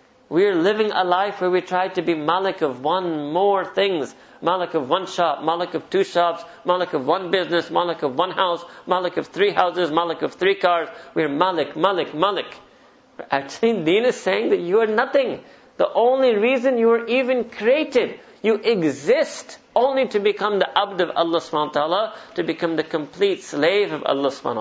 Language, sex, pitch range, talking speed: English, male, 170-205 Hz, 190 wpm